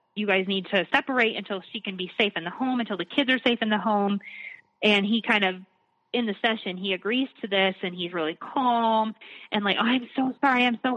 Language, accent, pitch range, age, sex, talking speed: English, American, 195-240 Hz, 20-39, female, 235 wpm